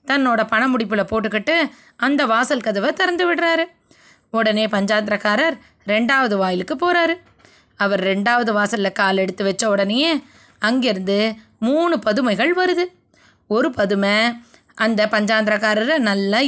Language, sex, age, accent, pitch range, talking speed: Tamil, female, 20-39, native, 215-300 Hz, 110 wpm